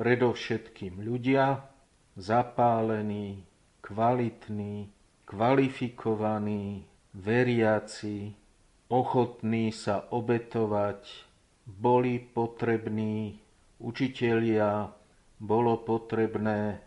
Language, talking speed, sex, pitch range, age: Slovak, 50 wpm, male, 105-115 Hz, 50-69